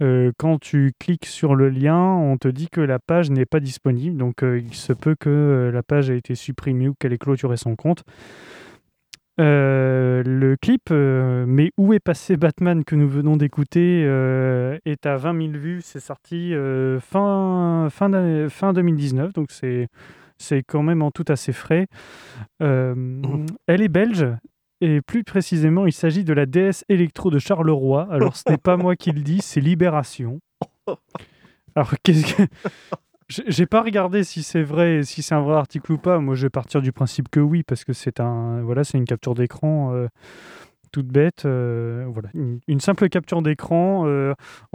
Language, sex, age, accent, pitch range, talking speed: French, male, 20-39, French, 135-170 Hz, 180 wpm